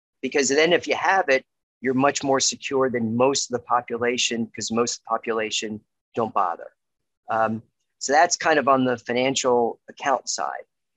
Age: 40-59